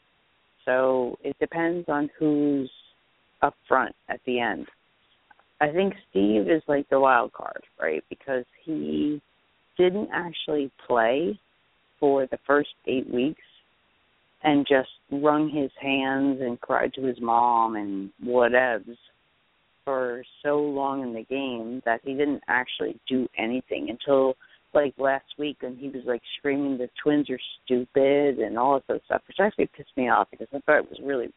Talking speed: 155 wpm